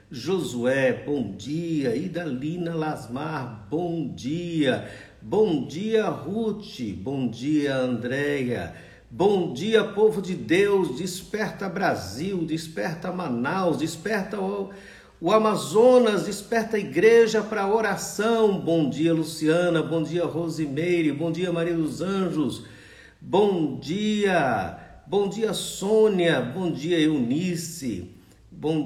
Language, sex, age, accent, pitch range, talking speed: Portuguese, male, 60-79, Brazilian, 135-185 Hz, 105 wpm